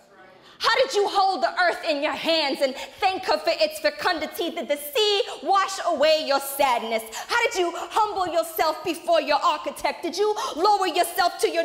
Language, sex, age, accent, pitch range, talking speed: English, female, 20-39, American, 275-345 Hz, 185 wpm